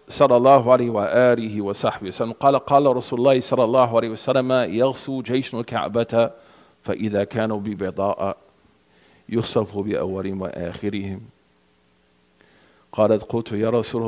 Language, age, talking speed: English, 50-69, 135 wpm